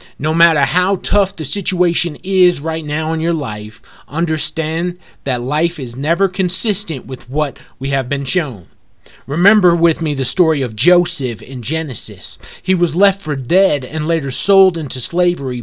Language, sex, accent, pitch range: English, male, American, 130-170 Hz